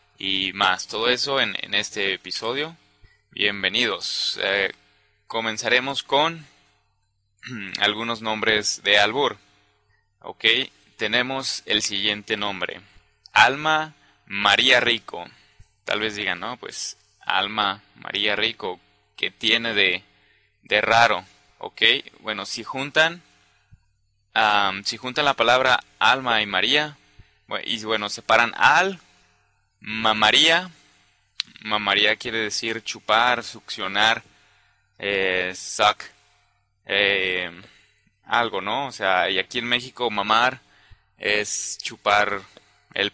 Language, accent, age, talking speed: English, Mexican, 20-39, 105 wpm